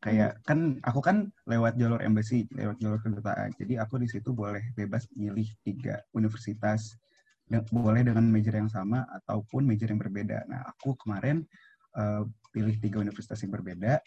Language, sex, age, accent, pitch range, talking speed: Indonesian, male, 20-39, native, 105-130 Hz, 160 wpm